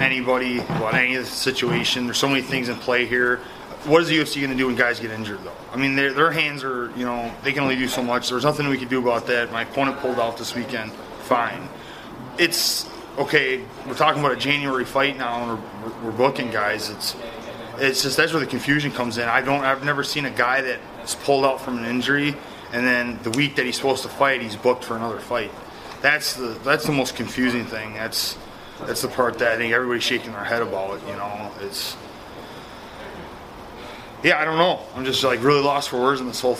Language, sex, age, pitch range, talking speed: English, male, 30-49, 120-140 Hz, 215 wpm